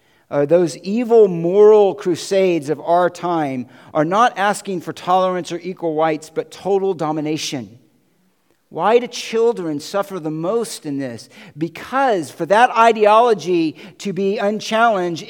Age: 50-69